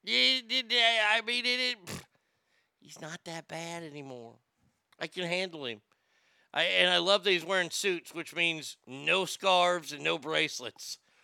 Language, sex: English, male